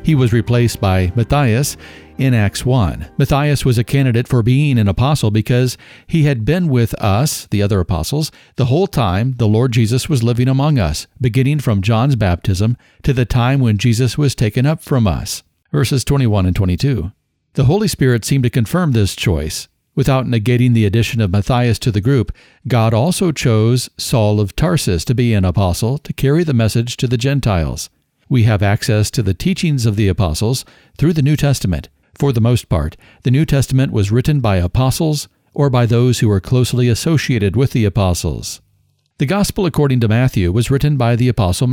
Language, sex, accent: English, male, American